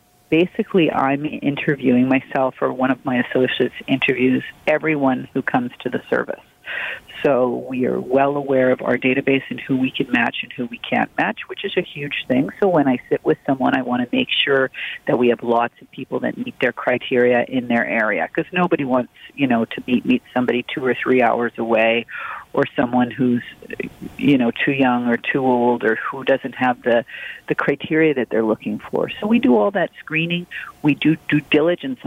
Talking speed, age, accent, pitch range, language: 200 wpm, 40-59, American, 120-150 Hz, English